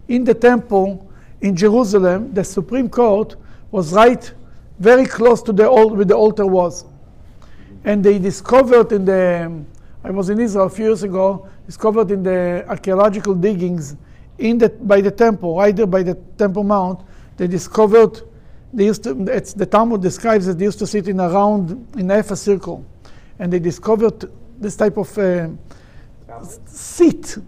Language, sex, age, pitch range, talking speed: English, male, 60-79, 185-220 Hz, 170 wpm